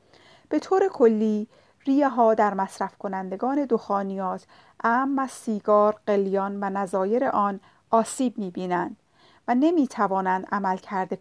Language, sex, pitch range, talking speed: Persian, female, 195-245 Hz, 120 wpm